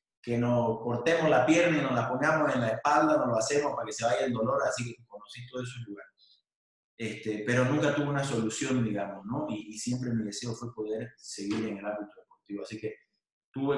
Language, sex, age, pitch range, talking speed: Spanish, male, 30-49, 110-140 Hz, 220 wpm